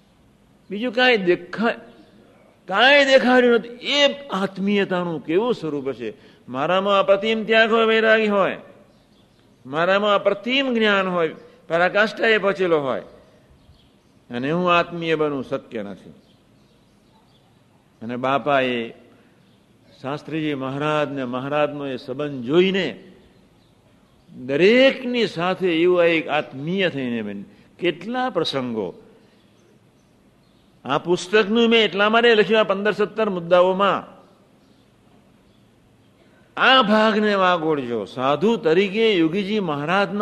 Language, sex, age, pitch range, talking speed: Gujarati, male, 60-79, 155-215 Hz, 35 wpm